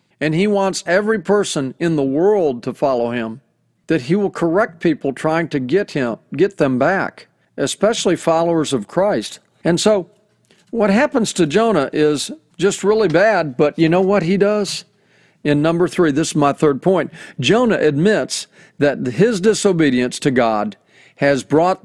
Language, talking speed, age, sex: English, 165 wpm, 40-59, male